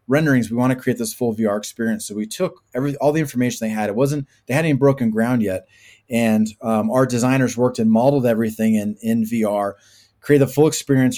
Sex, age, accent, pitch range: male, 20-39, American, 110-135 Hz